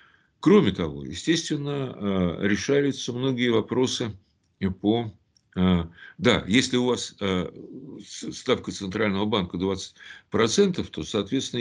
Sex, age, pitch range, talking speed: male, 60-79, 90-120 Hz, 90 wpm